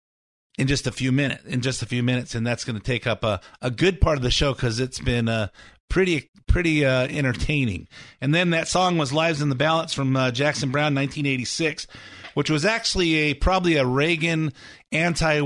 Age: 50-69